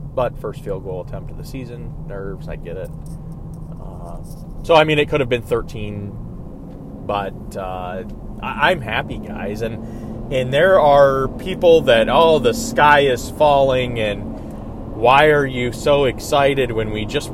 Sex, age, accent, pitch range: male, 30-49, American, 110-145 Hz